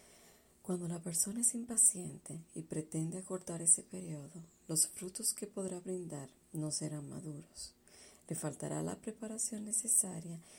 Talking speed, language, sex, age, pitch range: 130 wpm, Spanish, female, 40-59, 155-195 Hz